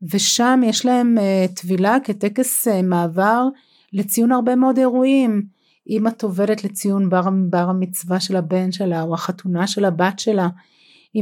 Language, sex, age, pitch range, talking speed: Hebrew, female, 30-49, 185-225 Hz, 140 wpm